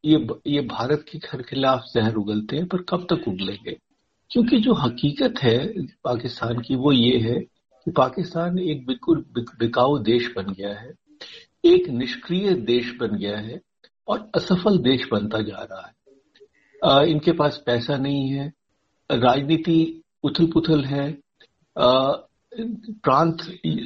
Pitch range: 130-185 Hz